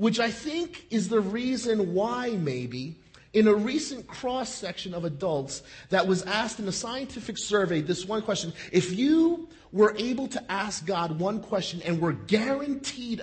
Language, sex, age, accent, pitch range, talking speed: English, male, 40-59, American, 160-235 Hz, 170 wpm